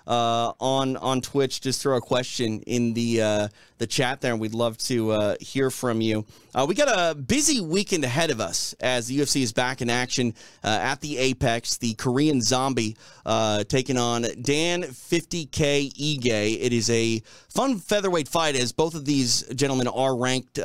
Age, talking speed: 30-49, 190 wpm